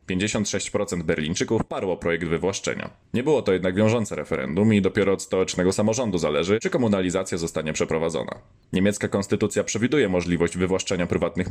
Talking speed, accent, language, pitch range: 135 wpm, native, Polish, 90-110 Hz